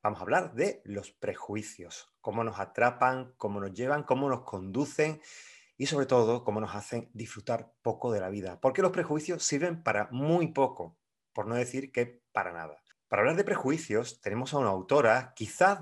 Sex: male